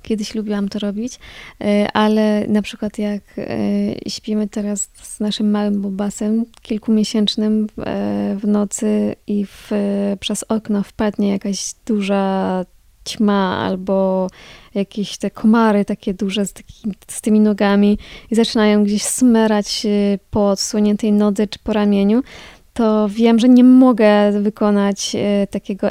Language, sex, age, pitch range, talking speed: Polish, female, 20-39, 195-215 Hz, 120 wpm